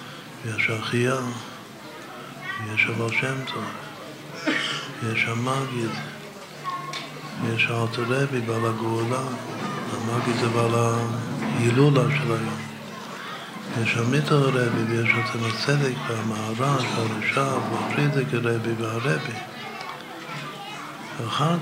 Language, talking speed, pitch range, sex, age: Hebrew, 85 wpm, 115-130 Hz, male, 60-79